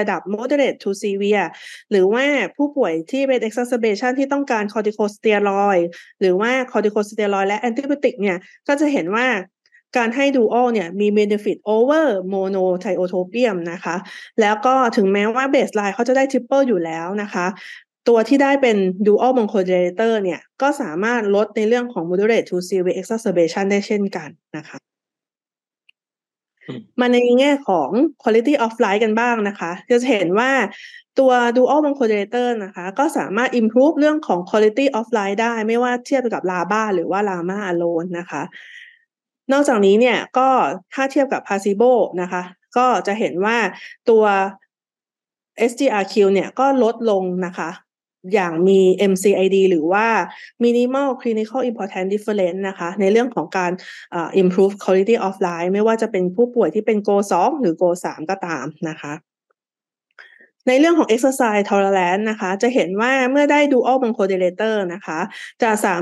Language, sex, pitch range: Thai, female, 190-250 Hz